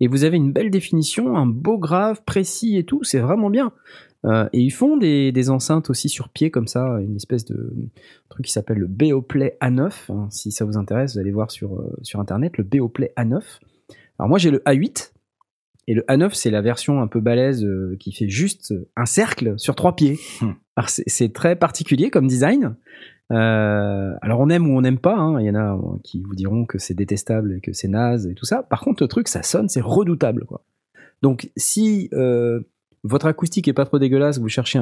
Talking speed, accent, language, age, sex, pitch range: 215 wpm, French, French, 30-49, male, 110-150 Hz